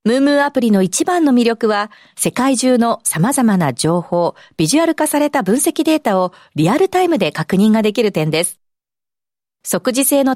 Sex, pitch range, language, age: female, 190-275 Hz, Japanese, 40-59